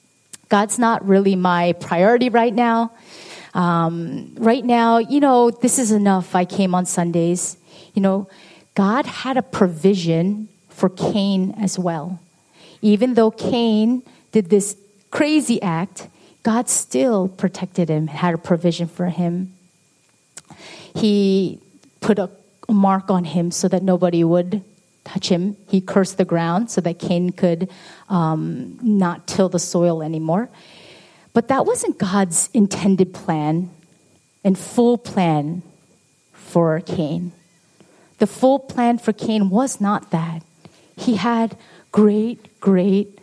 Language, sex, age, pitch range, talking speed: English, female, 30-49, 175-215 Hz, 130 wpm